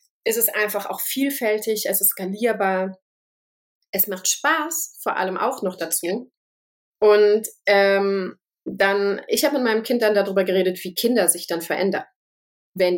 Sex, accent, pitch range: female, German, 180-225 Hz